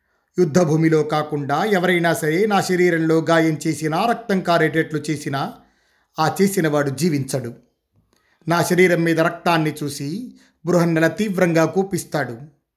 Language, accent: Telugu, native